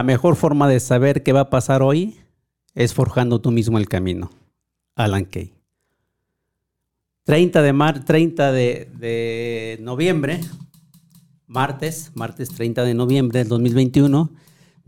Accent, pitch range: Mexican, 115-140 Hz